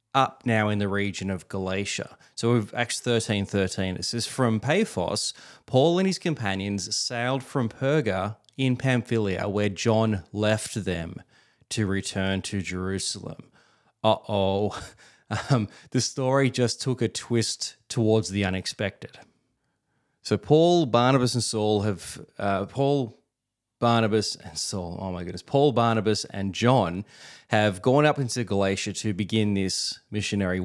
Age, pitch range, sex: 20-39, 100-130 Hz, male